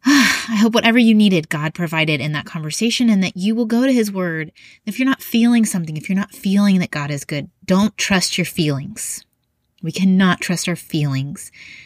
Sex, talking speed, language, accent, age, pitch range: female, 200 wpm, English, American, 30-49, 150-195 Hz